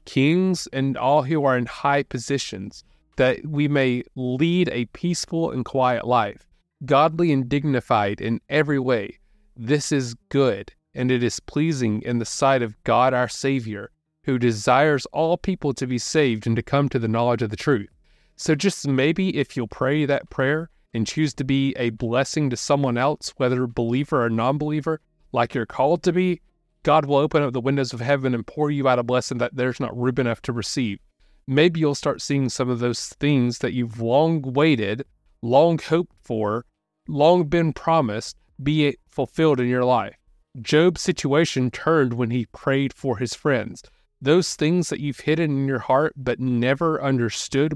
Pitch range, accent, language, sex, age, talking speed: 125-150 Hz, American, English, male, 30-49, 180 wpm